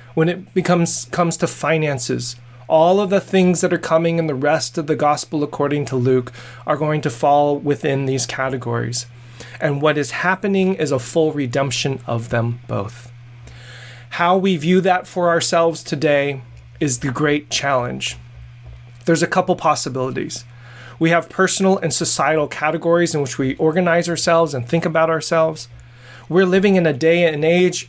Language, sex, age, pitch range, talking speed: English, male, 30-49, 120-170 Hz, 165 wpm